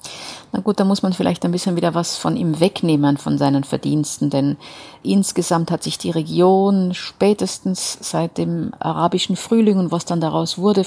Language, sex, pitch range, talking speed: German, female, 175-215 Hz, 175 wpm